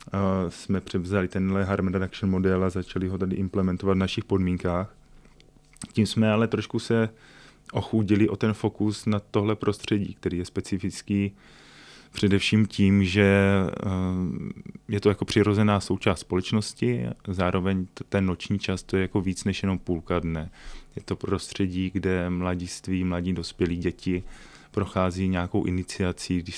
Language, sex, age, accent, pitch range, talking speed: Czech, male, 20-39, native, 90-95 Hz, 145 wpm